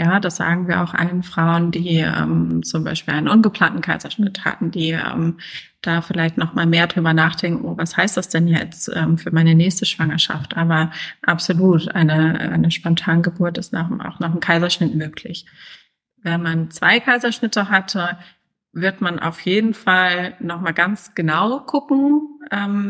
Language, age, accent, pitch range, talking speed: German, 30-49, German, 170-205 Hz, 170 wpm